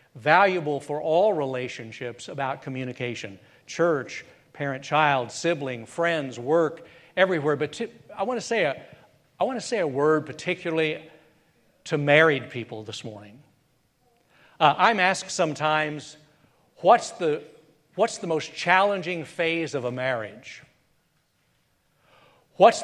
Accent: American